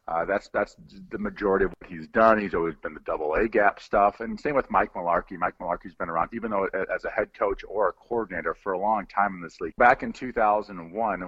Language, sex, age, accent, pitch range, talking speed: English, male, 40-59, American, 90-110 Hz, 235 wpm